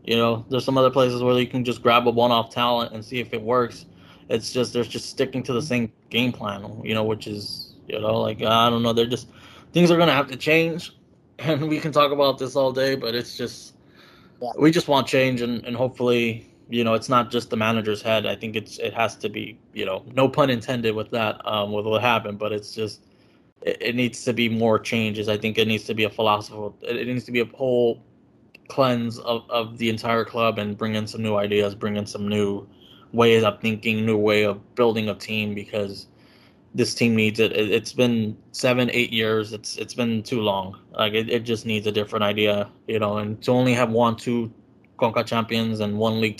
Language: English